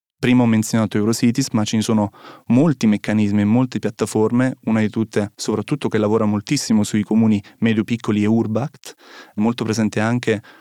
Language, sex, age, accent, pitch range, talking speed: Italian, male, 20-39, native, 110-125 Hz, 155 wpm